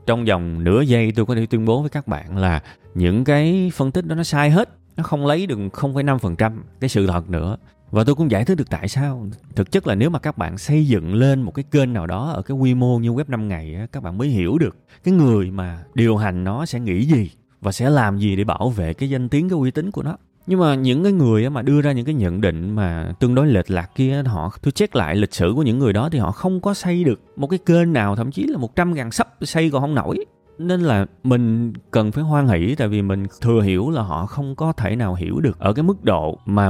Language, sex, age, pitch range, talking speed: Vietnamese, male, 20-39, 100-145 Hz, 265 wpm